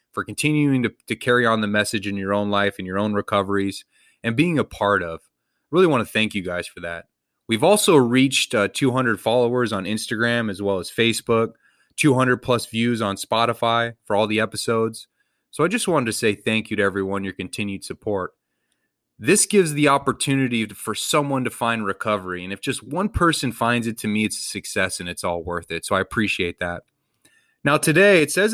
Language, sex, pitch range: English, male, 100-130 Hz